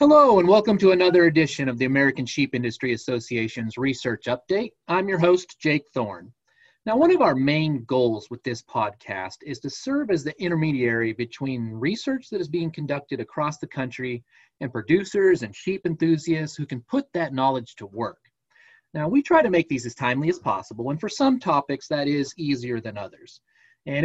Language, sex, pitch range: English, male, 125-180 Hz